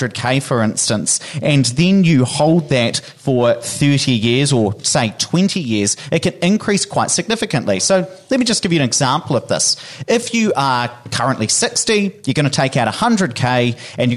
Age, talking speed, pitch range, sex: 30-49, 180 wpm, 125-170 Hz, male